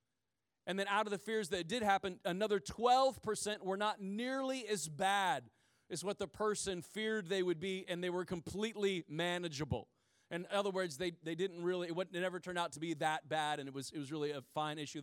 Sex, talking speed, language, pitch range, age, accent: male, 215 wpm, English, 150-215 Hz, 30-49, American